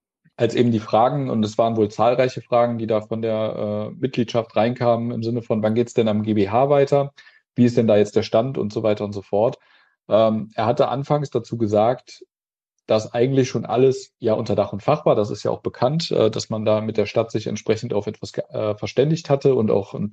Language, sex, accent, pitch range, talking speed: German, male, German, 110-125 Hz, 230 wpm